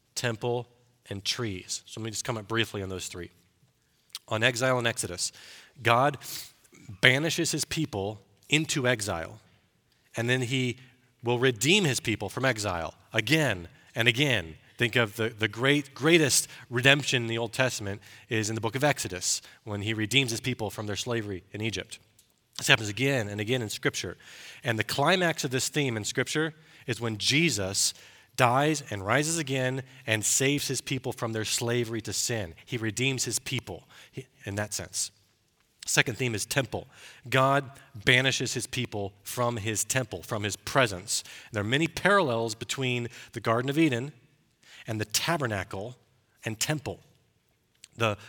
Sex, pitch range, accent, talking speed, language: male, 110-135 Hz, American, 160 wpm, English